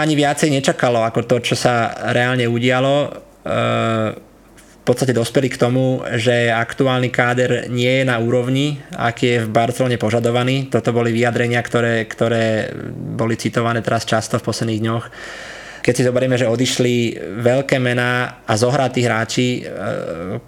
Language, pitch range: Slovak, 120-130 Hz